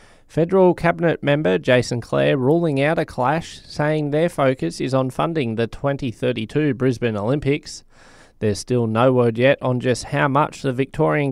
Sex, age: male, 20-39